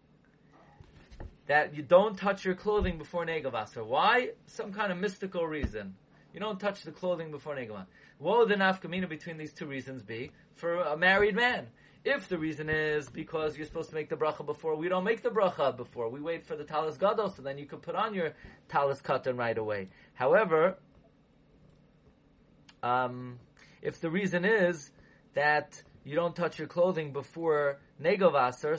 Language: English